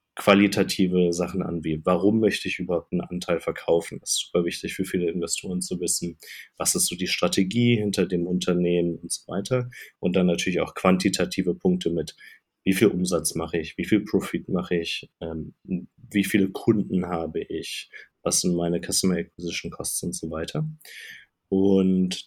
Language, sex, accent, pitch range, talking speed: German, male, German, 85-100 Hz, 170 wpm